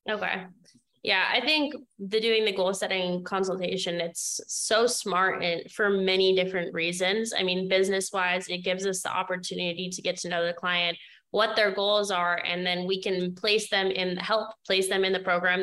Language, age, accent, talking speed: English, 20-39, American, 190 wpm